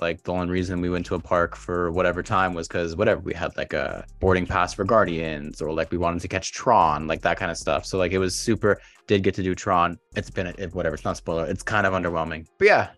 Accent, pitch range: American, 85-100 Hz